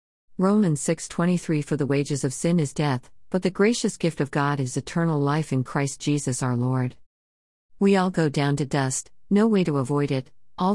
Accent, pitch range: American, 135-170 Hz